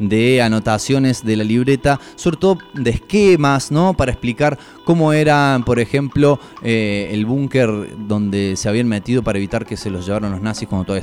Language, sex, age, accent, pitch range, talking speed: Spanish, male, 20-39, Argentinian, 105-140 Hz, 180 wpm